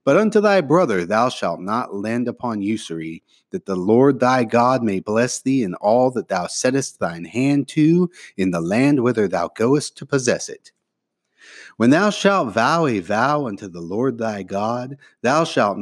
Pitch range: 100-140 Hz